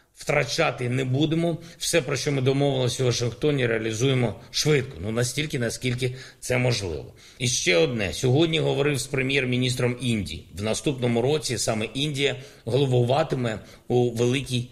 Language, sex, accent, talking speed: Ukrainian, male, native, 135 wpm